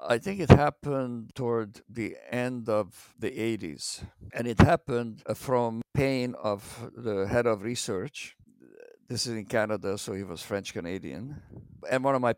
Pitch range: 105-125 Hz